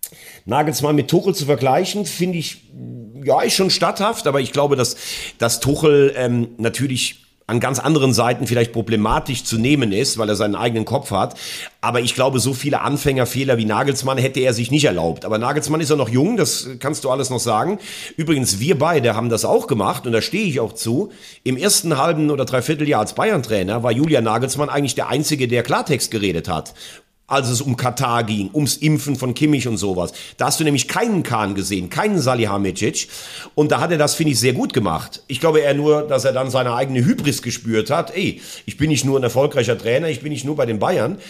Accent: German